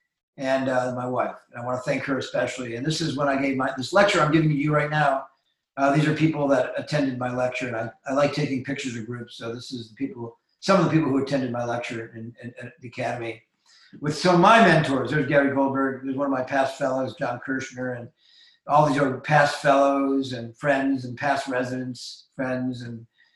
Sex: male